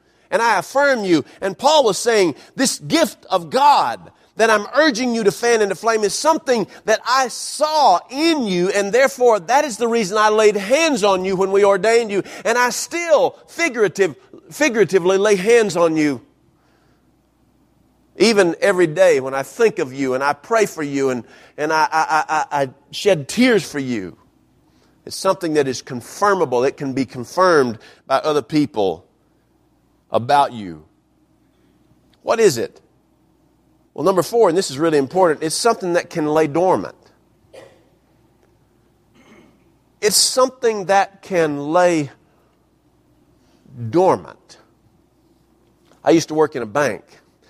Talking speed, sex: 145 wpm, male